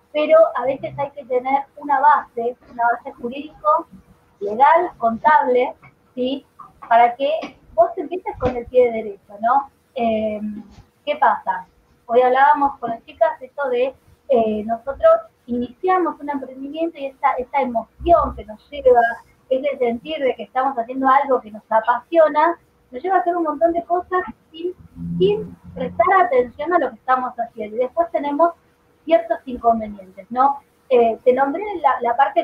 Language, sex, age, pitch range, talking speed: Spanish, female, 20-39, 230-310 Hz, 160 wpm